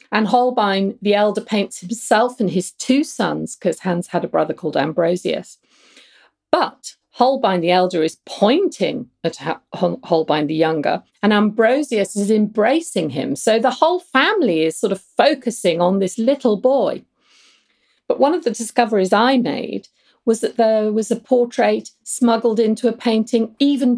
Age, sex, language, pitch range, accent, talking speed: 40-59, female, English, 185-250 Hz, British, 155 wpm